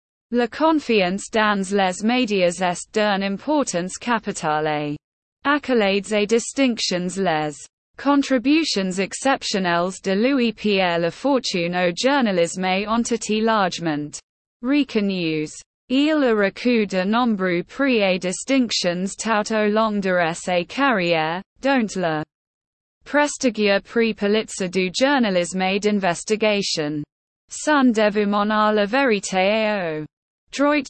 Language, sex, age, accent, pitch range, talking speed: English, female, 20-39, British, 180-235 Hz, 95 wpm